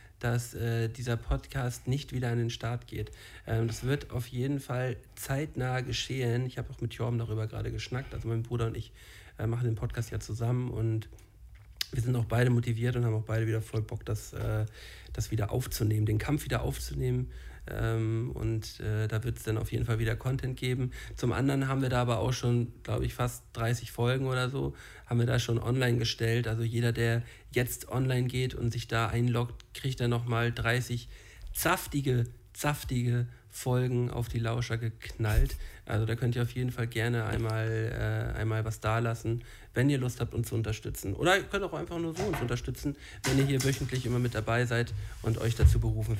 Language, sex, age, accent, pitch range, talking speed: German, male, 50-69, German, 110-125 Hz, 200 wpm